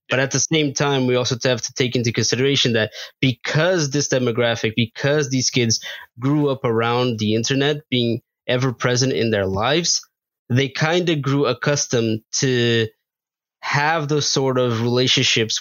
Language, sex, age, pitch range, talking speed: English, male, 20-39, 115-140 Hz, 160 wpm